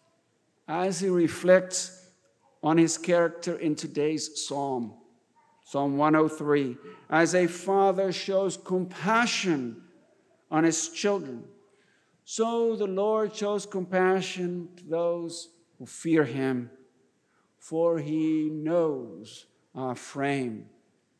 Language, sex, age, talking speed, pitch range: English, male, 60-79, 95 wpm, 150-185 Hz